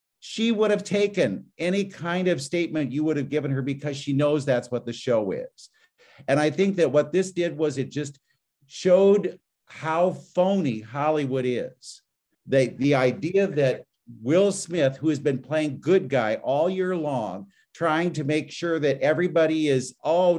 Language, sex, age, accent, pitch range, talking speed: English, male, 50-69, American, 130-170 Hz, 175 wpm